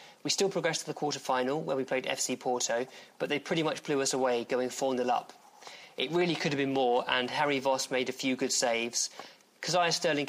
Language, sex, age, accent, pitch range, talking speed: English, male, 20-39, British, 125-150 Hz, 215 wpm